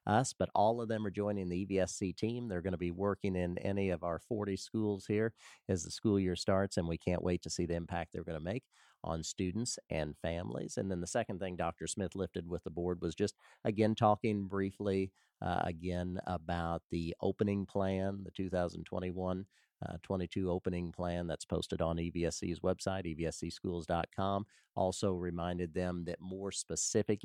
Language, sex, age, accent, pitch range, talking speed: English, male, 40-59, American, 85-100 Hz, 180 wpm